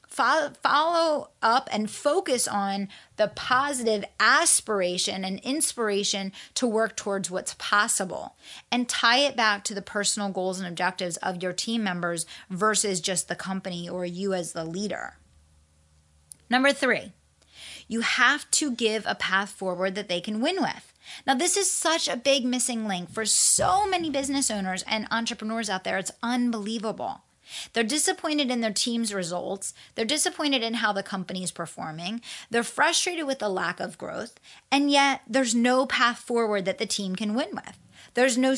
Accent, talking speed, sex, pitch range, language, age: American, 165 wpm, female, 195-255 Hz, English, 30-49